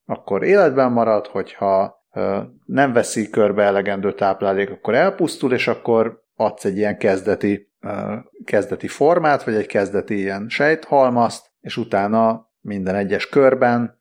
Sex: male